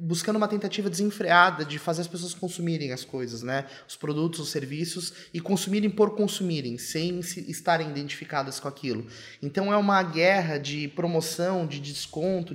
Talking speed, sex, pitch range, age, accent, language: 165 wpm, male, 145-175 Hz, 20-39, Brazilian, Portuguese